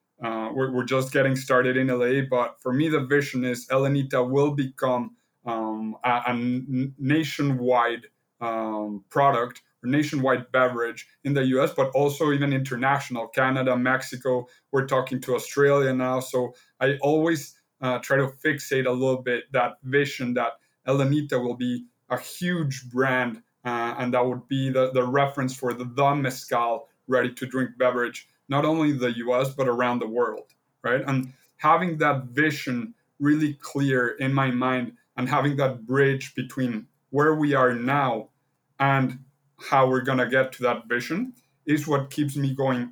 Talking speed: 160 wpm